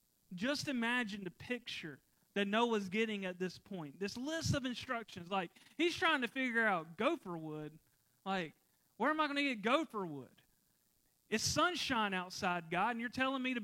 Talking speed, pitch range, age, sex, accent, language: 175 wpm, 205-290 Hz, 40-59, male, American, English